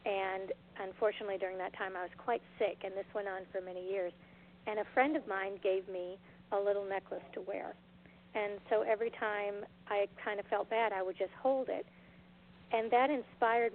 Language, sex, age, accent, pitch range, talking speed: English, female, 40-59, American, 190-215 Hz, 195 wpm